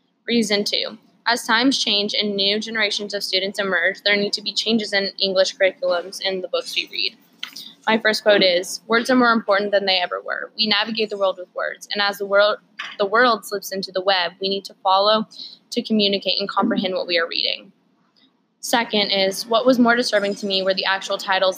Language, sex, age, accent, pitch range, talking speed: English, female, 10-29, American, 190-220 Hz, 210 wpm